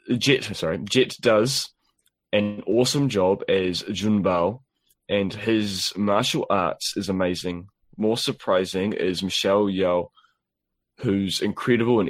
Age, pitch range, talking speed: 20-39, 90-110 Hz, 120 wpm